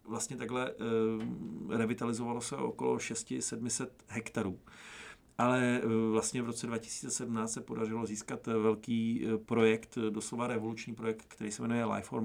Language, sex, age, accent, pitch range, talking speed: Czech, male, 40-59, native, 110-125 Hz, 125 wpm